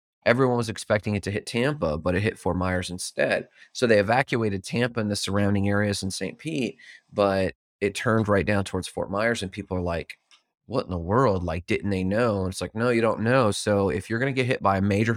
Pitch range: 95-115 Hz